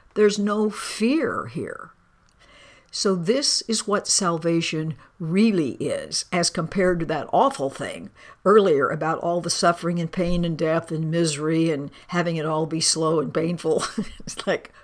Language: English